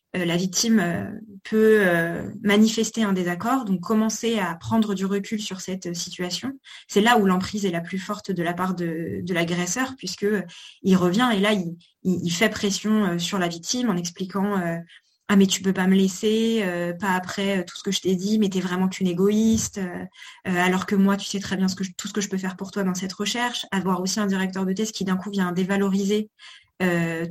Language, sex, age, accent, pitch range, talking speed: French, female, 20-39, French, 185-210 Hz, 240 wpm